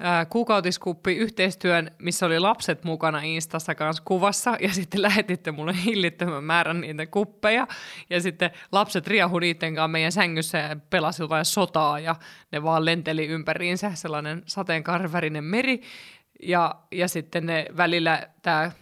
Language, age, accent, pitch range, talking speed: Finnish, 20-39, native, 160-185 Hz, 130 wpm